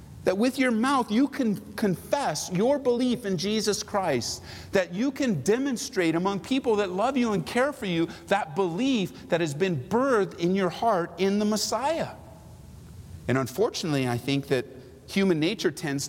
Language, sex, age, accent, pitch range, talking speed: English, male, 50-69, American, 165-235 Hz, 170 wpm